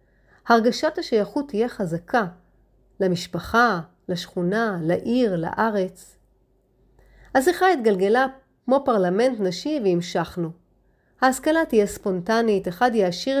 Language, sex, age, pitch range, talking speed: Hebrew, female, 30-49, 190-260 Hz, 85 wpm